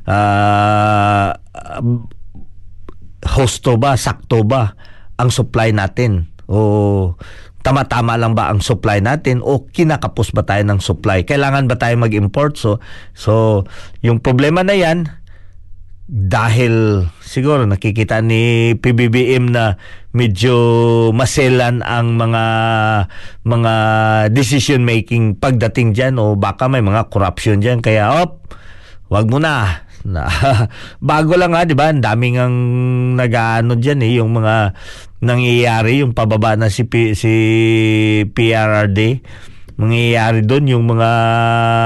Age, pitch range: 40-59, 105-120 Hz